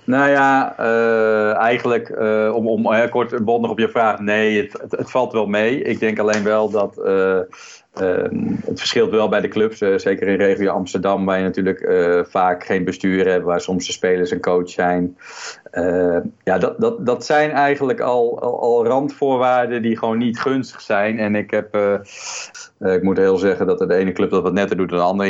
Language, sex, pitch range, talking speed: Dutch, male, 95-125 Hz, 215 wpm